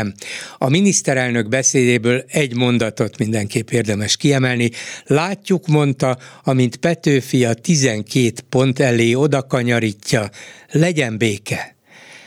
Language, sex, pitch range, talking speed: Hungarian, male, 120-145 Hz, 95 wpm